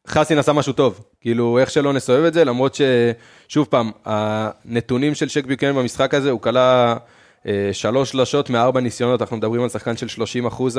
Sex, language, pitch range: male, Hebrew, 115-135 Hz